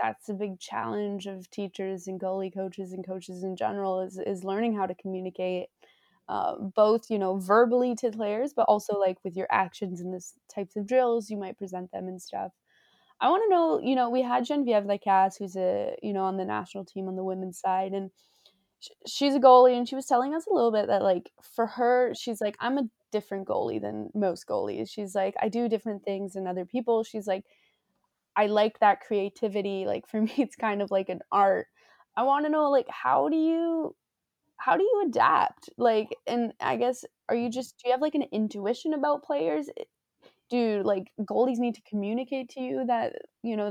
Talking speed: 210 wpm